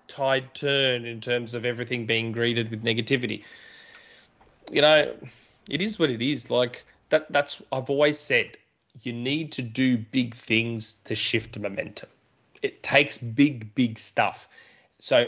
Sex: male